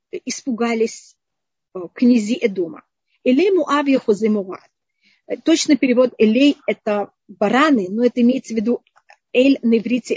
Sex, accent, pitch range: female, native, 215-270 Hz